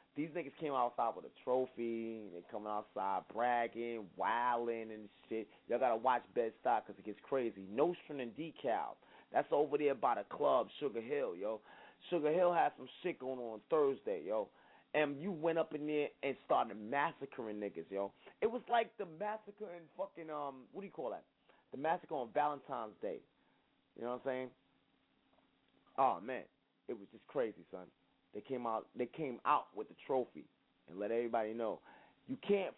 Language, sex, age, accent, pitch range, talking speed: English, male, 30-49, American, 130-215 Hz, 185 wpm